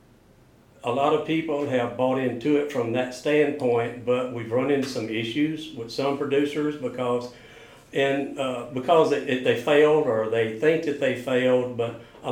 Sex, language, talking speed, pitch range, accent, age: male, English, 175 wpm, 125-145 Hz, American, 60-79